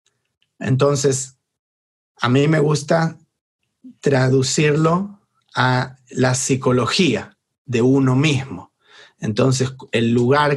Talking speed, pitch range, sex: 85 wpm, 125-145 Hz, male